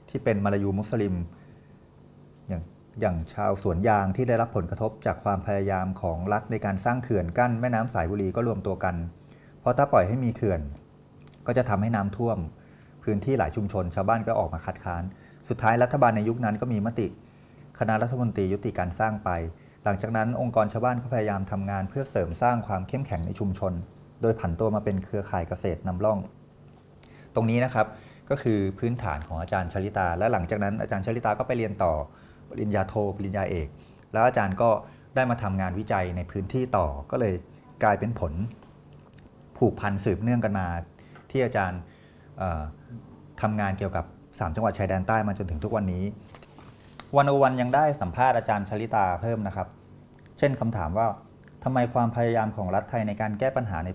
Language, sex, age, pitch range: Thai, male, 30-49, 95-115 Hz